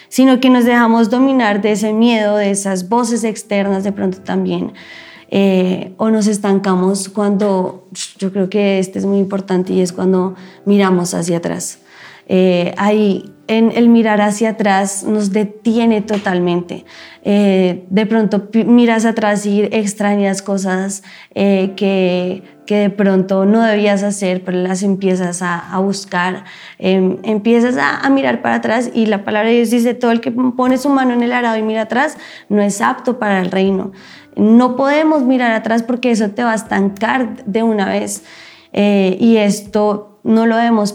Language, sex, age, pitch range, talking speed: Spanish, female, 20-39, 195-235 Hz, 170 wpm